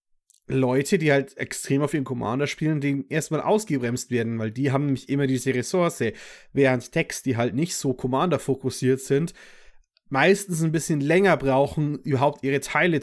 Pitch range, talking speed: 120-170 Hz, 160 wpm